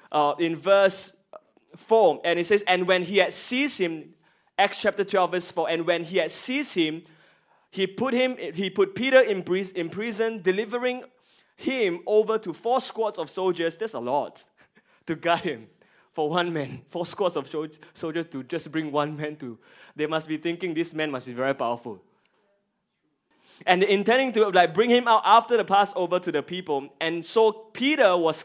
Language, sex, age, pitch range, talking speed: English, male, 20-39, 170-225 Hz, 185 wpm